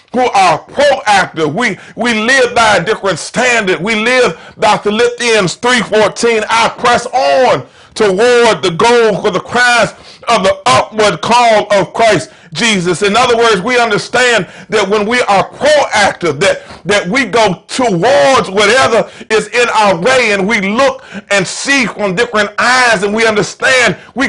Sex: male